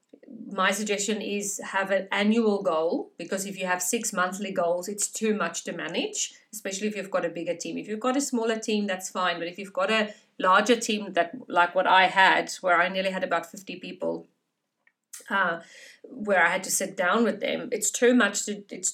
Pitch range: 180-220 Hz